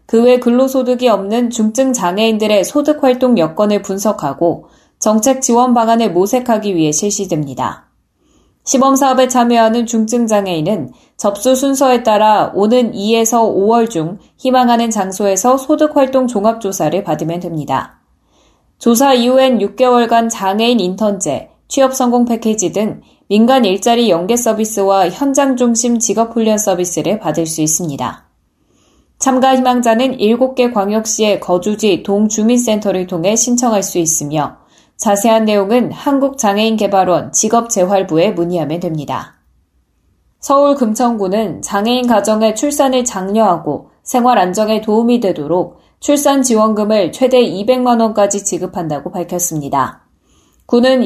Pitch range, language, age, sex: 195-245 Hz, Korean, 10-29, female